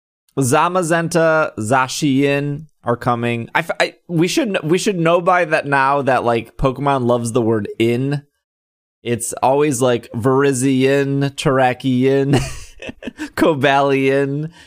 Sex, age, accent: male, 20-39, American